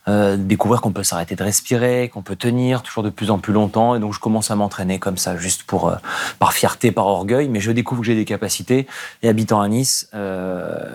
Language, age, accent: French, 30-49, French